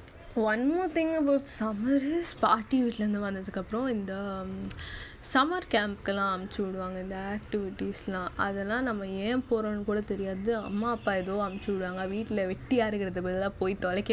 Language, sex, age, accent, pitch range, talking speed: Tamil, female, 10-29, native, 190-230 Hz, 130 wpm